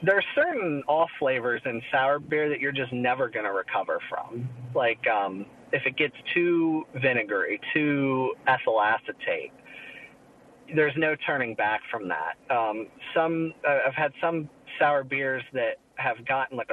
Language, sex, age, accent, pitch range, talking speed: English, male, 30-49, American, 135-175 Hz, 160 wpm